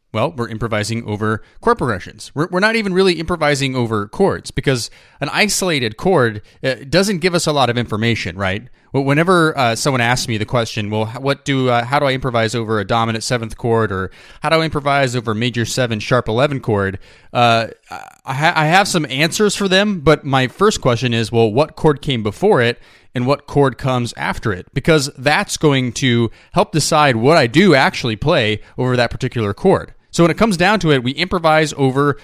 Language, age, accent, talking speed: English, 30-49, American, 205 wpm